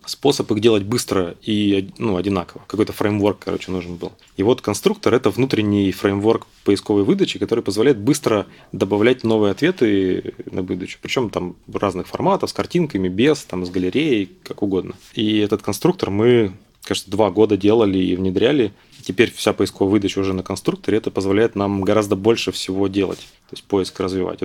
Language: Russian